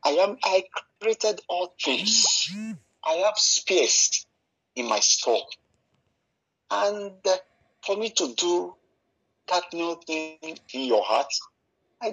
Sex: male